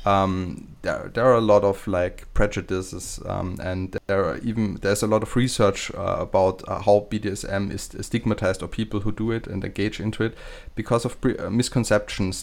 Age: 20-39